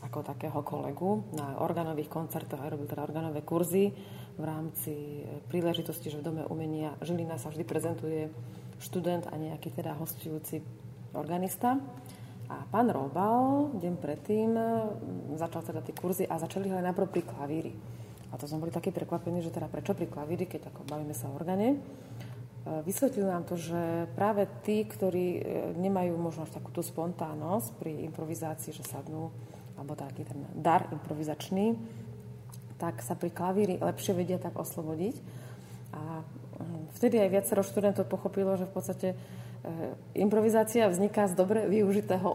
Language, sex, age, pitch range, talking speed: Slovak, female, 30-49, 150-185 Hz, 145 wpm